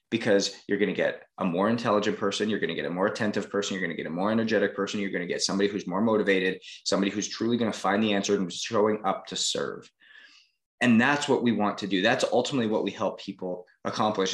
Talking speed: 250 wpm